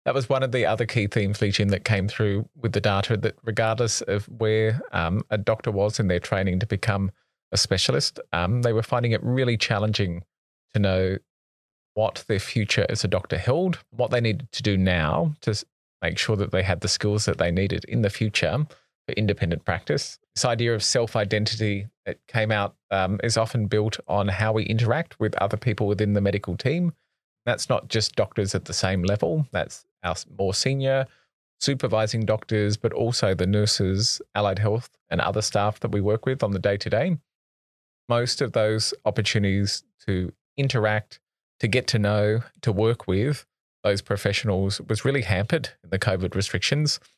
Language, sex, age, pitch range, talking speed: English, male, 30-49, 100-115 Hz, 180 wpm